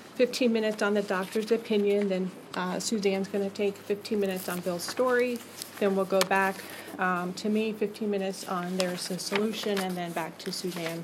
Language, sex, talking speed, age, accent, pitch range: English, female, 190 wpm, 30-49, American, 175-200 Hz